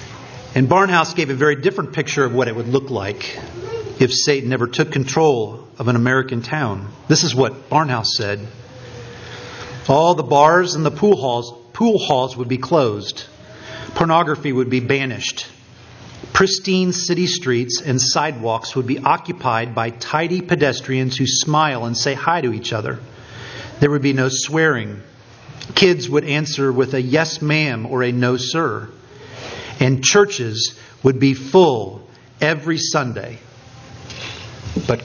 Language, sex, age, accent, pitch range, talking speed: English, male, 40-59, American, 125-180 Hz, 145 wpm